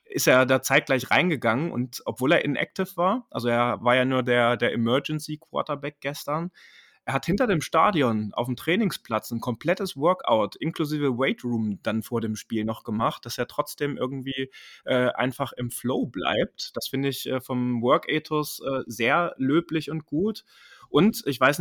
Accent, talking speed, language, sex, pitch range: German, 170 wpm, German, male, 120-150 Hz